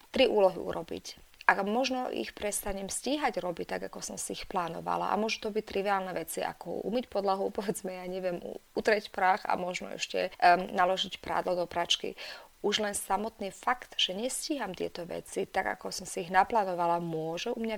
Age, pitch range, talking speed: 30-49, 180-210 Hz, 180 wpm